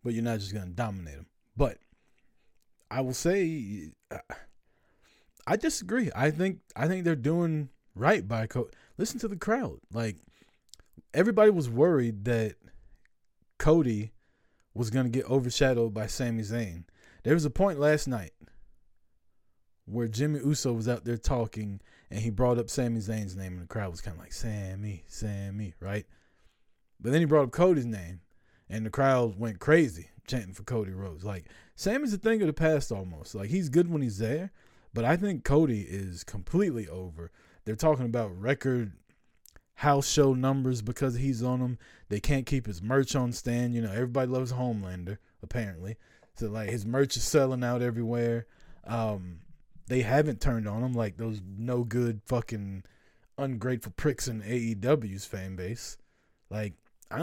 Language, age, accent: English, 20-39, American